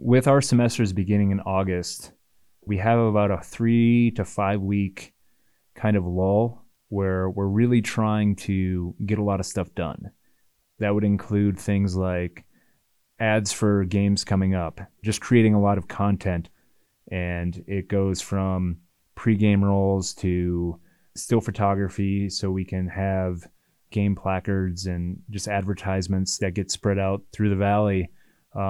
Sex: male